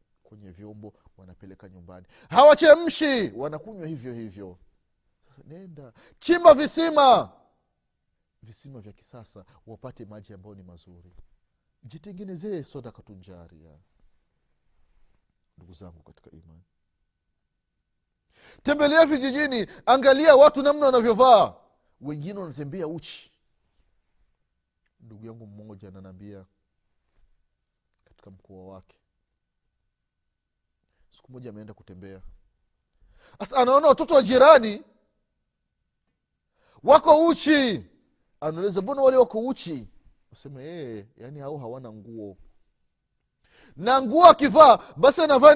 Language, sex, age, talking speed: Swahili, male, 40-59, 95 wpm